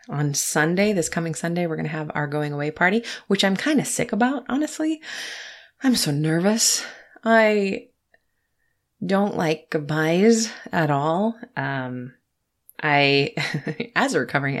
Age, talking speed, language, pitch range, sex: 30-49, 140 wpm, English, 135-180 Hz, female